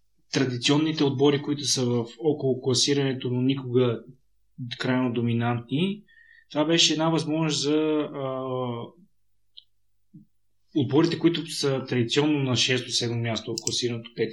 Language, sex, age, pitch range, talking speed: Bulgarian, male, 20-39, 120-145 Hz, 110 wpm